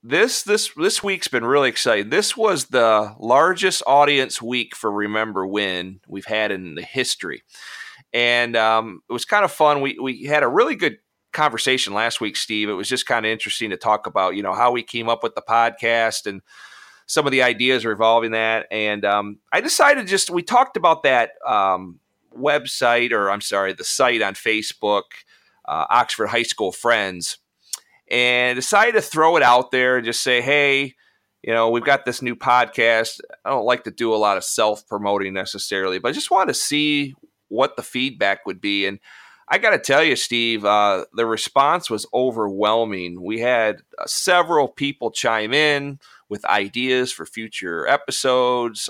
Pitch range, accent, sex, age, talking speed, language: 105-135 Hz, American, male, 40-59, 185 wpm, English